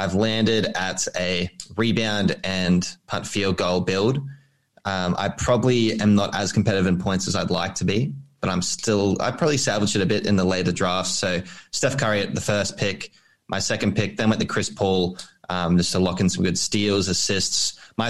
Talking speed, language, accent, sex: 205 wpm, English, Australian, male